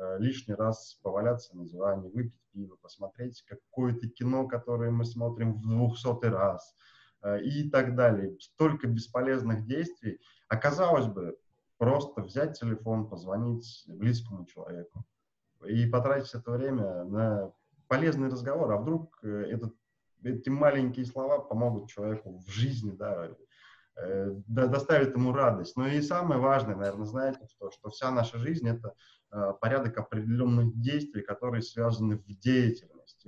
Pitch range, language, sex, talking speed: 105-130 Hz, Russian, male, 120 wpm